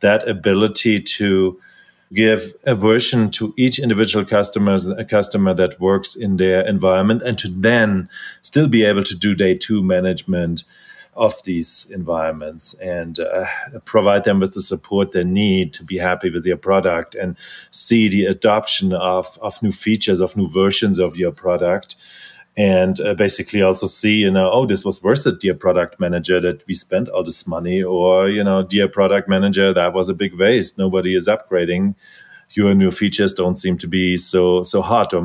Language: English